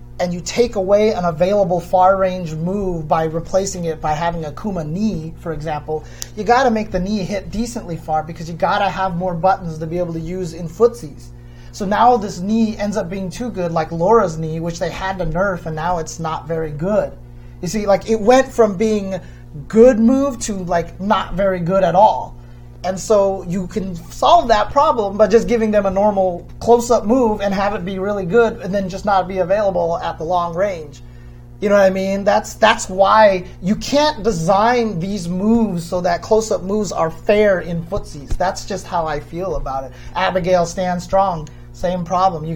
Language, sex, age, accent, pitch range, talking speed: English, male, 30-49, American, 165-215 Hz, 205 wpm